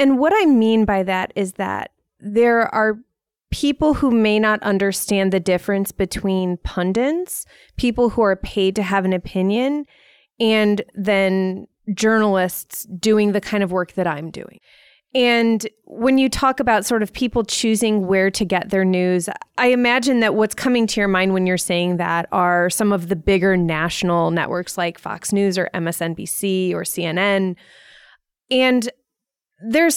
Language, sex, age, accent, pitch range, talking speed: English, female, 20-39, American, 185-235 Hz, 160 wpm